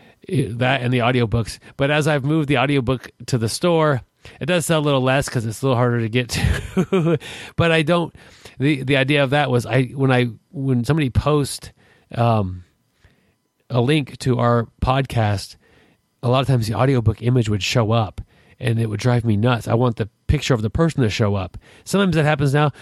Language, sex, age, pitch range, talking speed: English, male, 30-49, 110-130 Hz, 210 wpm